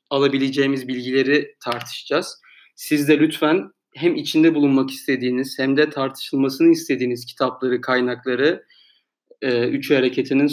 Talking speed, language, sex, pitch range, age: 110 wpm, Turkish, male, 125-155 Hz, 30-49